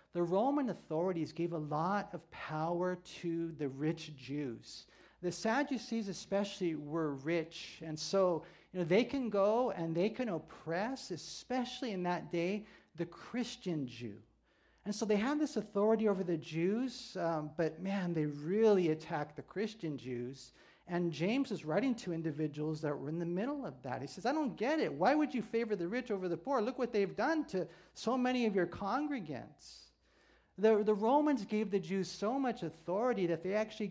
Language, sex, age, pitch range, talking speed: English, male, 50-69, 155-210 Hz, 180 wpm